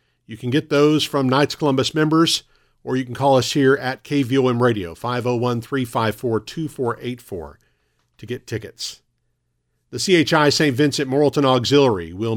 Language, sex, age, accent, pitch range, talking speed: English, male, 50-69, American, 115-145 Hz, 135 wpm